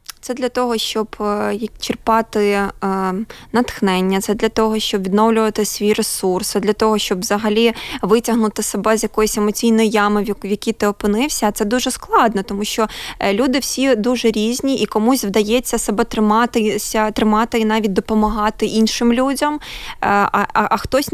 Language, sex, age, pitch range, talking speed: Ukrainian, female, 20-39, 215-250 Hz, 150 wpm